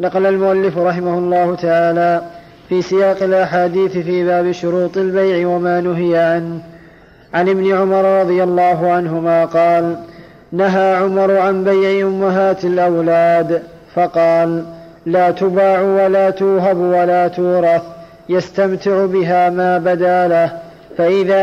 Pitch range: 170-190 Hz